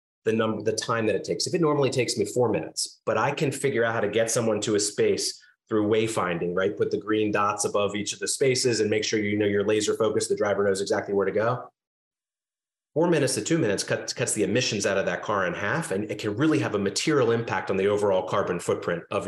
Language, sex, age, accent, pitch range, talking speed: English, male, 30-49, American, 105-135 Hz, 255 wpm